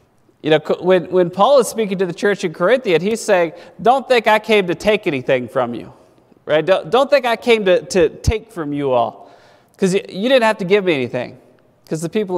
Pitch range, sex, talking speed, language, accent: 170-240 Hz, male, 225 wpm, English, American